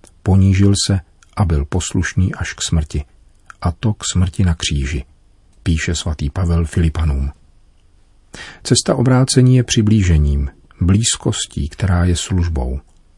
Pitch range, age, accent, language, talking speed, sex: 80-100 Hz, 40-59, native, Czech, 120 wpm, male